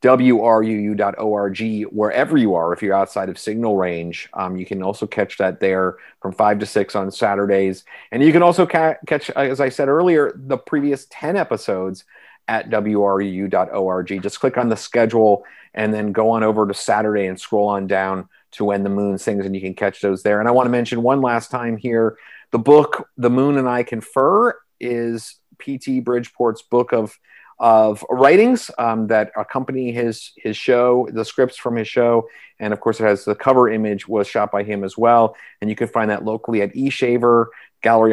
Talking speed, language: 195 wpm, English